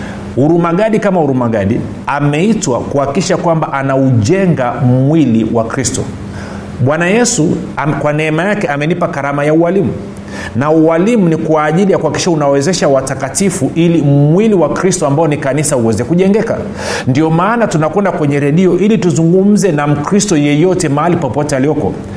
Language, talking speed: Swahili, 140 wpm